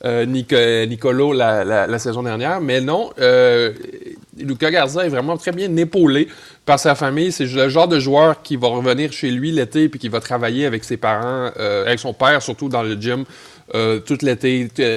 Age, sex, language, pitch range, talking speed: 30-49, male, French, 120-150 Hz, 200 wpm